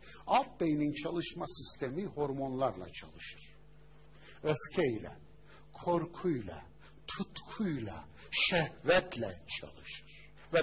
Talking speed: 70 wpm